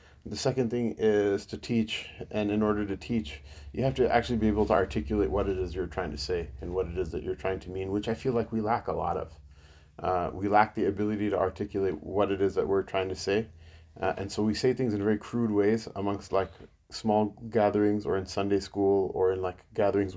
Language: English